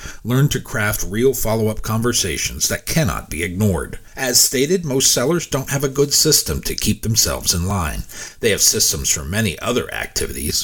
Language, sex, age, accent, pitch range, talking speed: English, male, 50-69, American, 95-130 Hz, 175 wpm